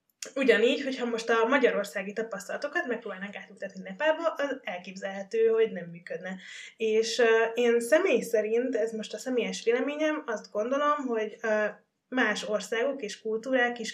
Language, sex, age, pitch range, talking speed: Hungarian, female, 20-39, 190-225 Hz, 145 wpm